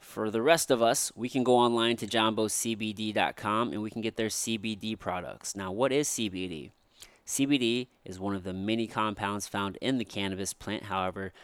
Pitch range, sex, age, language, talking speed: 95-115 Hz, male, 30-49, English, 185 wpm